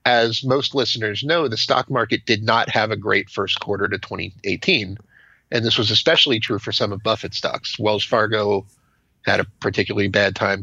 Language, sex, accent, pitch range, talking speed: English, male, American, 105-125 Hz, 185 wpm